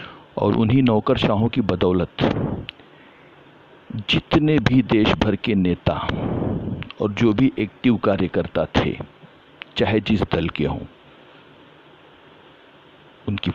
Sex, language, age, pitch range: male, Hindi, 50-69, 95-115 Hz